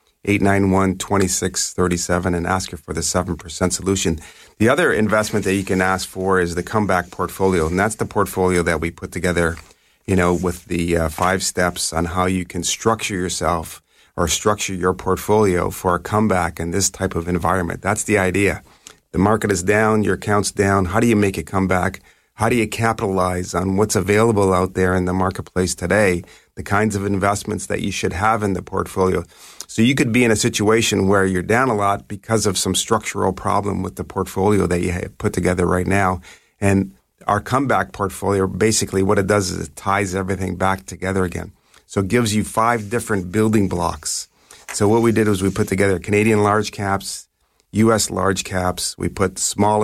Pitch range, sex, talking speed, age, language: 90-105 Hz, male, 195 wpm, 30-49, English